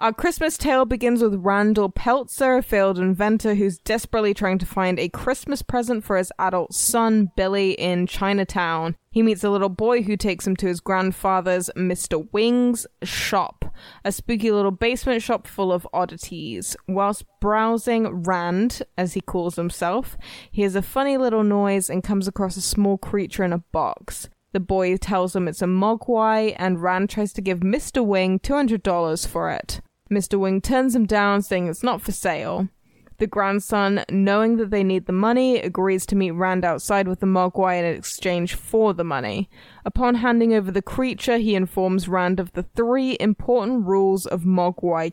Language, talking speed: English, 175 wpm